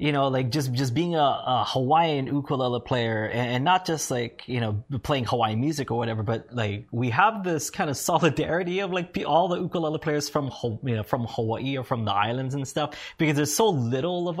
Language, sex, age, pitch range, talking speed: English, male, 20-39, 115-155 Hz, 220 wpm